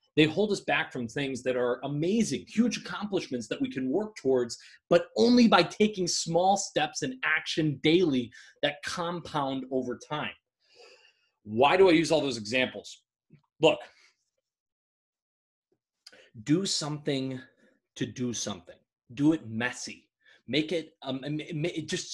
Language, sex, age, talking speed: English, male, 30-49, 130 wpm